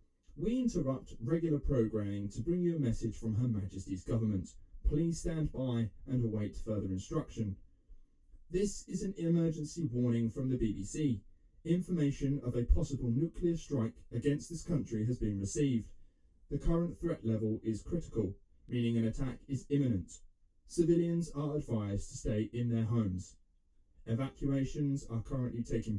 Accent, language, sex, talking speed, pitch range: British, English, male, 145 wpm, 105-145 Hz